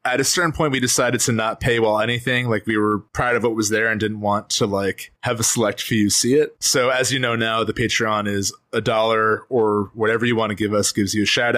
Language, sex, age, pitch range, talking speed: English, male, 20-39, 105-130 Hz, 265 wpm